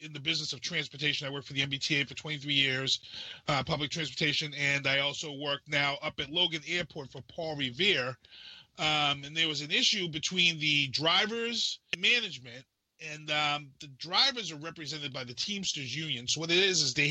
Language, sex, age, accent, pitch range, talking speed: English, male, 30-49, American, 140-175 Hz, 190 wpm